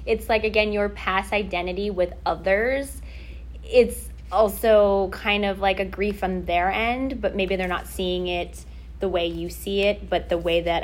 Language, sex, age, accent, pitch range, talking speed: English, female, 20-39, American, 175-205 Hz, 185 wpm